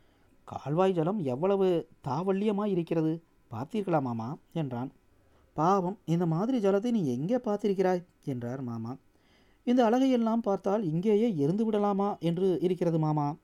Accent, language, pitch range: native, Tamil, 140-205 Hz